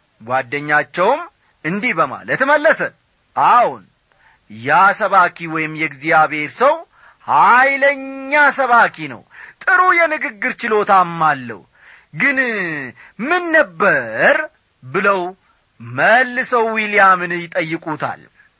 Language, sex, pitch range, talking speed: Amharic, male, 185-255 Hz, 70 wpm